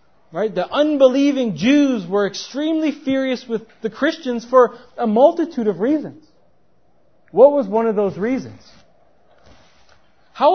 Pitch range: 205-275 Hz